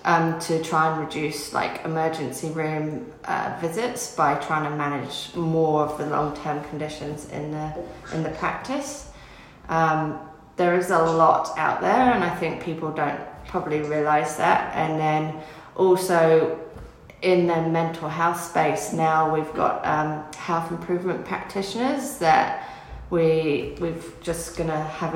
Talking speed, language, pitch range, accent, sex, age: 145 wpm, English, 155-180 Hz, British, female, 30-49